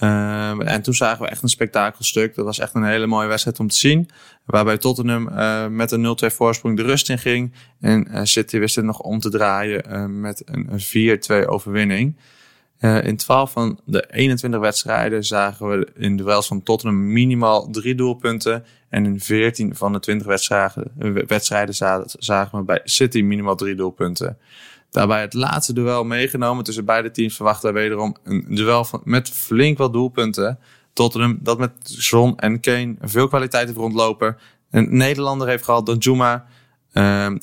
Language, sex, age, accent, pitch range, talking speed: Dutch, male, 20-39, Dutch, 105-125 Hz, 175 wpm